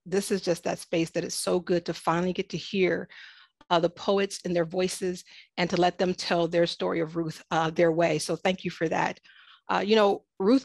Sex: female